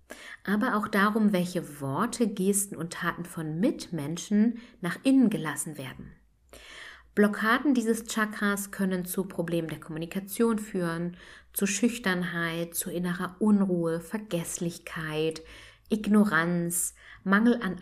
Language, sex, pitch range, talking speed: German, female, 170-225 Hz, 110 wpm